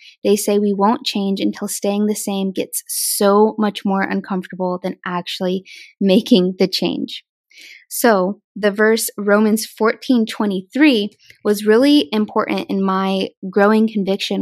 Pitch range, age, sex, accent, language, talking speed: 195-225 Hz, 20-39, female, American, English, 135 wpm